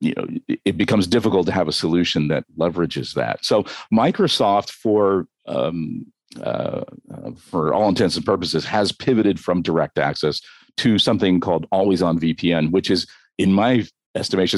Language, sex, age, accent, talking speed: English, male, 50-69, American, 160 wpm